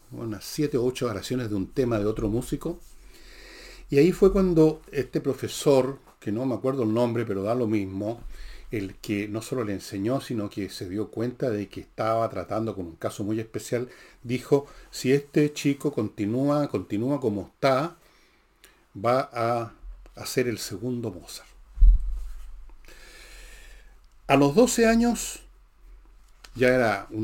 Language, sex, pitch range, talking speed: Spanish, male, 105-140 Hz, 150 wpm